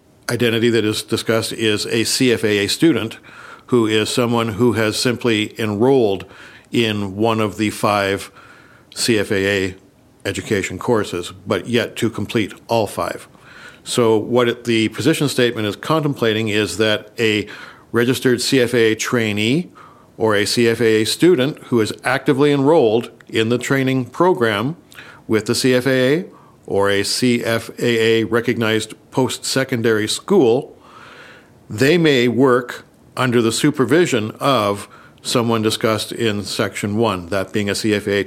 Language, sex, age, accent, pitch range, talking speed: English, male, 50-69, American, 110-130 Hz, 120 wpm